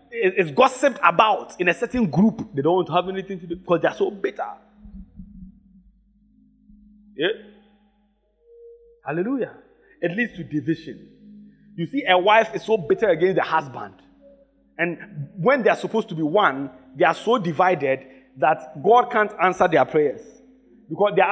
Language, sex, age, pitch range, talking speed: English, male, 30-49, 175-225 Hz, 150 wpm